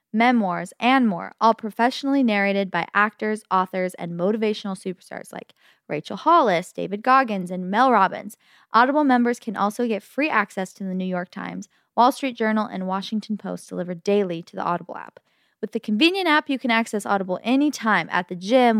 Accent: American